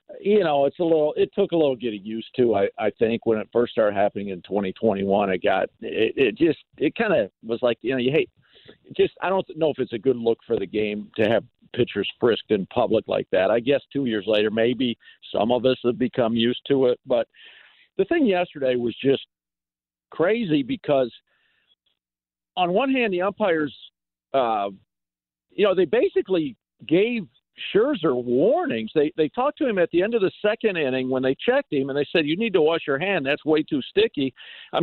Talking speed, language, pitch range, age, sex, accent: 210 wpm, English, 125-185 Hz, 50-69, male, American